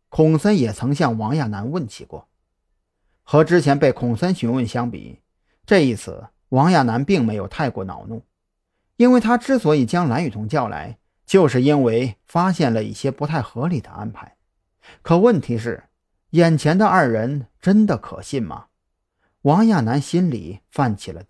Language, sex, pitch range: Chinese, male, 110-165 Hz